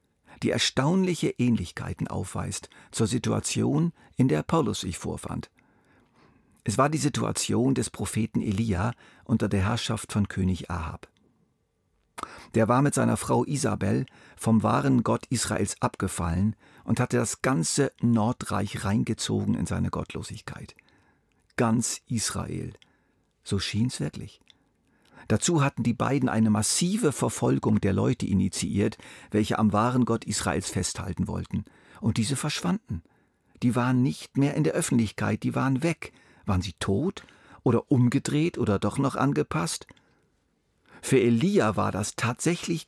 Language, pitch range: German, 105-130 Hz